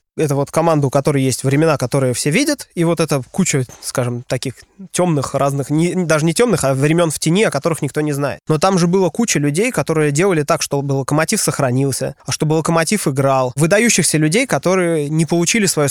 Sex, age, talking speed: male, 20-39, 200 wpm